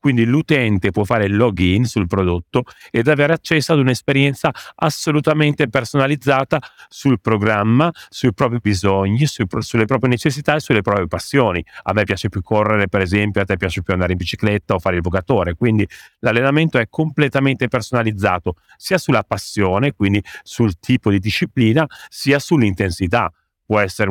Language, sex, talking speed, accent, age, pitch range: Italian, male, 155 wpm, native, 40-59, 95-125 Hz